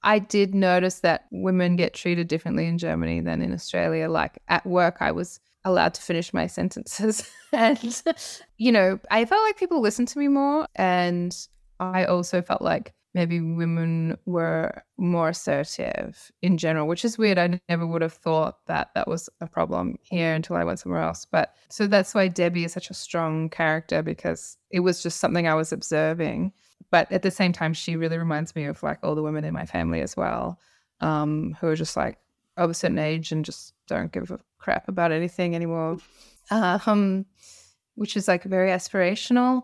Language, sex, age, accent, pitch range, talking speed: English, female, 20-39, Australian, 165-210 Hz, 190 wpm